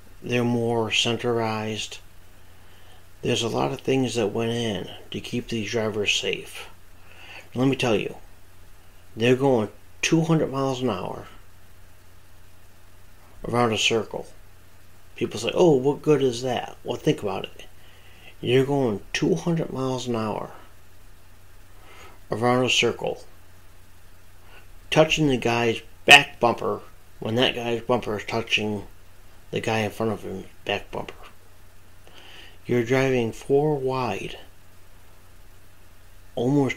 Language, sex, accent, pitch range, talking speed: English, male, American, 90-120 Hz, 120 wpm